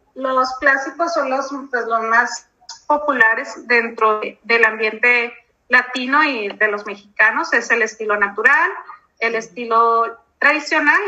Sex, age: female, 30-49